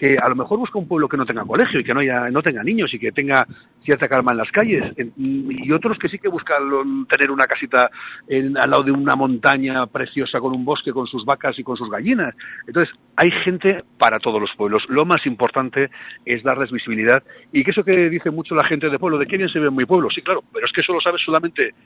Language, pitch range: Spanish, 125-175 Hz